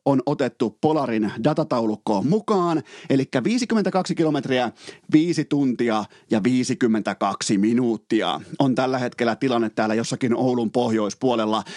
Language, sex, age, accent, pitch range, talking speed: Finnish, male, 30-49, native, 115-150 Hz, 105 wpm